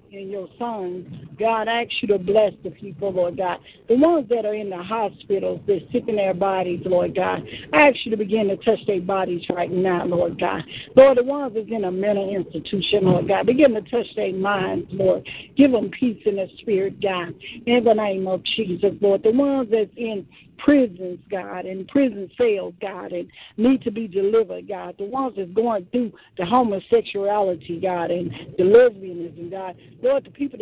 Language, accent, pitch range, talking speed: English, American, 190-245 Hz, 190 wpm